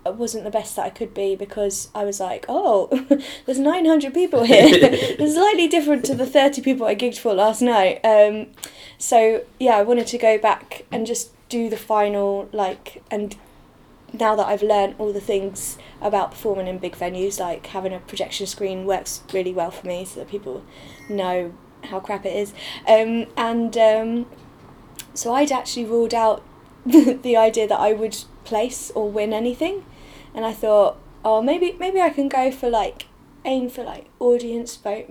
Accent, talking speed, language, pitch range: British, 180 wpm, English, 205-255 Hz